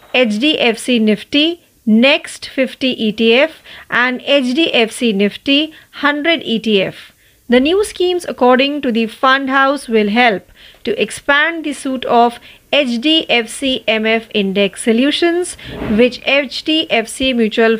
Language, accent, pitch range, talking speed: Marathi, native, 225-295 Hz, 110 wpm